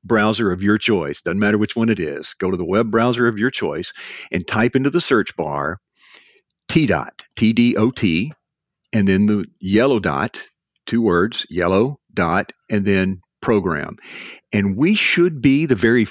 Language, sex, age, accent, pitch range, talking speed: English, male, 50-69, American, 95-120 Hz, 170 wpm